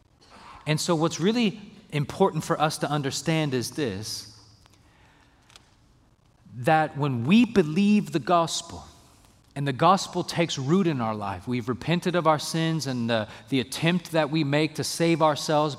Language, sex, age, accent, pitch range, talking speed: English, male, 30-49, American, 125-170 Hz, 150 wpm